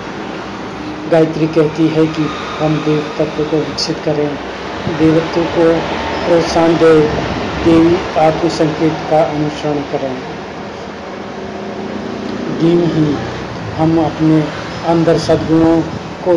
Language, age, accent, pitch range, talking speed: Hindi, 50-69, native, 155-165 Hz, 95 wpm